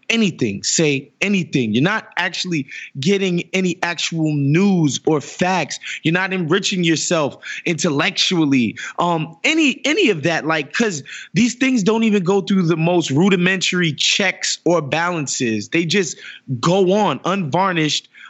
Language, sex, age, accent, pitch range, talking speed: English, male, 20-39, American, 160-205 Hz, 135 wpm